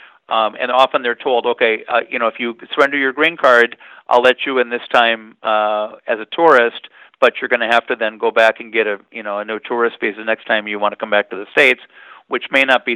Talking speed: 270 wpm